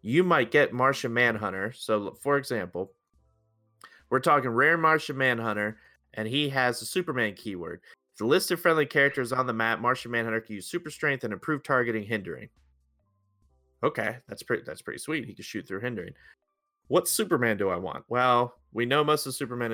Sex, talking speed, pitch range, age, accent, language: male, 180 wpm, 100-125 Hz, 30-49, American, English